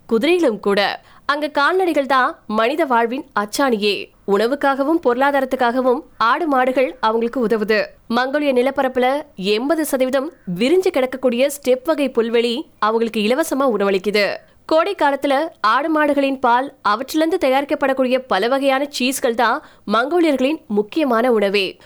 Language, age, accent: Tamil, 20-39, native